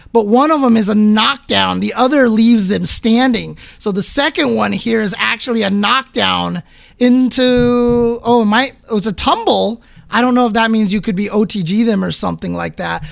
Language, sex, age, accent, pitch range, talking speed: English, male, 20-39, American, 210-265 Hz, 190 wpm